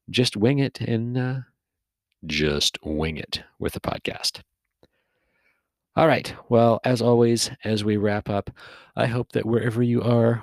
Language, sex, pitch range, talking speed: English, male, 90-115 Hz, 150 wpm